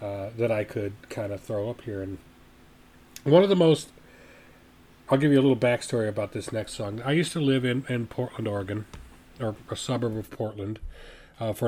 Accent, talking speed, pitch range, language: American, 200 wpm, 100-140 Hz, English